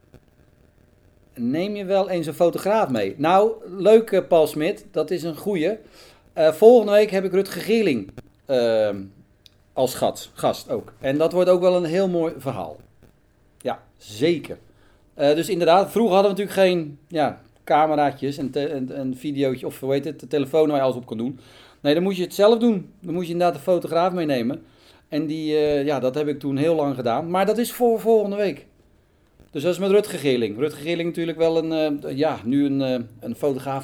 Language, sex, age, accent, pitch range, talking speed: Dutch, male, 40-59, Dutch, 135-195 Hz, 200 wpm